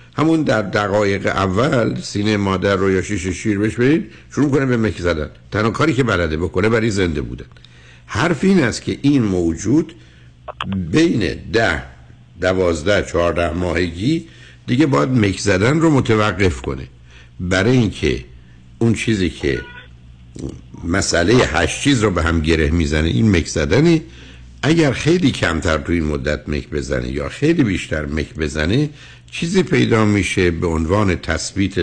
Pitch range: 80-125 Hz